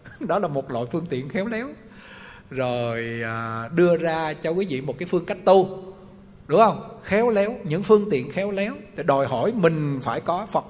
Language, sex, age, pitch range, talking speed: Vietnamese, male, 20-39, 145-200 Hz, 190 wpm